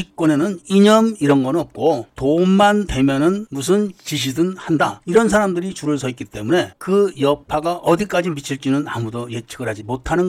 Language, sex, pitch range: Korean, male, 140-215 Hz